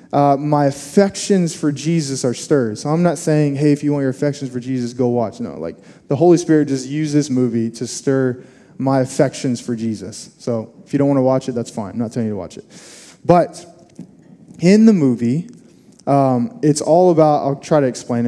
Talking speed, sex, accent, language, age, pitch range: 215 wpm, male, American, English, 20-39, 135-175 Hz